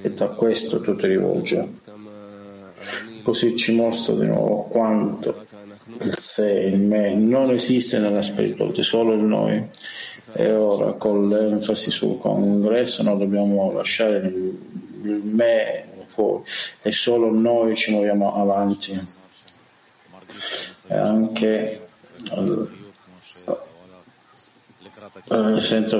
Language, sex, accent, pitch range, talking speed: Italian, male, native, 105-115 Hz, 100 wpm